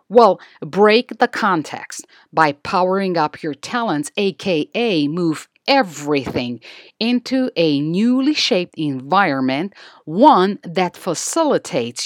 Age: 50-69